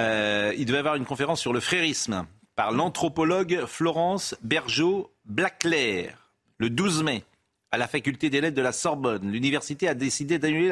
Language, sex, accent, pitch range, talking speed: French, male, French, 100-145 Hz, 155 wpm